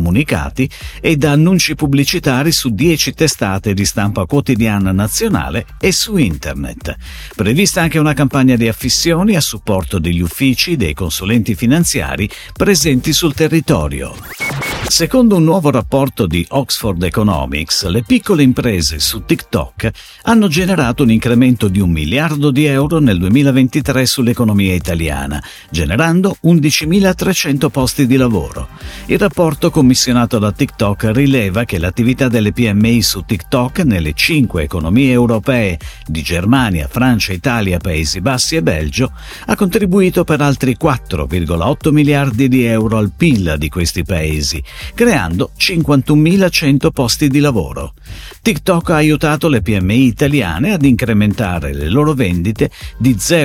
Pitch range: 95-150 Hz